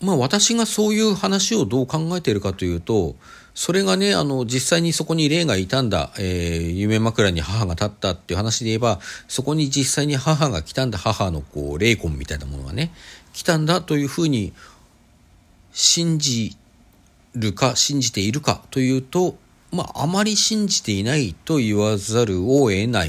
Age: 50-69